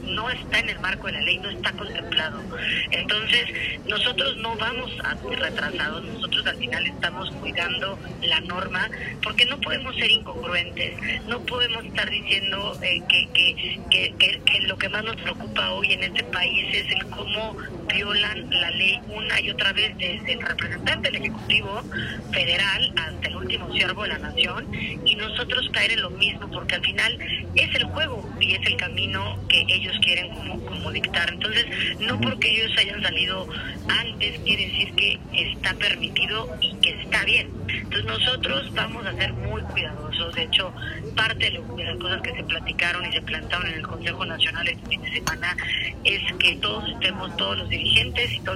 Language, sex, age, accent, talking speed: Spanish, female, 40-59, Mexican, 180 wpm